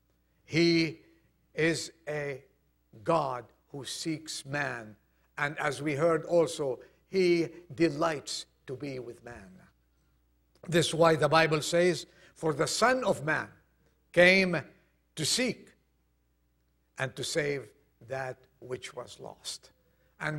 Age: 60-79